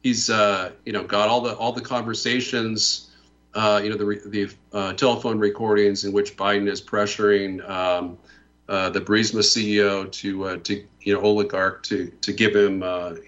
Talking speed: 175 wpm